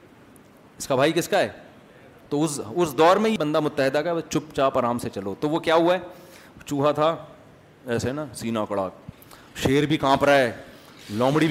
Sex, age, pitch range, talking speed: male, 30-49, 135-175 Hz, 180 wpm